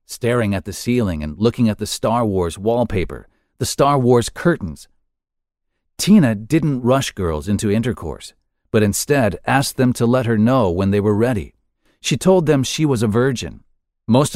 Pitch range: 100-135 Hz